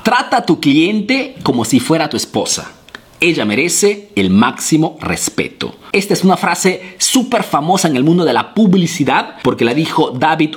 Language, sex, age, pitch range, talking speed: Spanish, male, 40-59, 135-200 Hz, 170 wpm